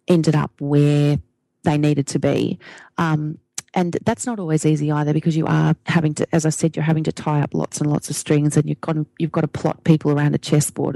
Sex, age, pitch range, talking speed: female, 30-49, 155-185 Hz, 240 wpm